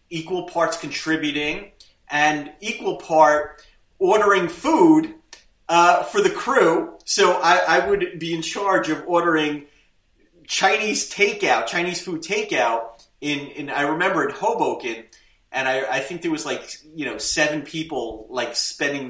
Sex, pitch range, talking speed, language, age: male, 130-165 Hz, 140 wpm, English, 30-49